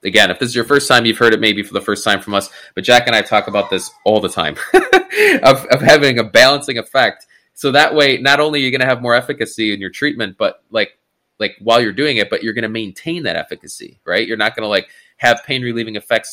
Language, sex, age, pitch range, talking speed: English, male, 20-39, 105-125 Hz, 265 wpm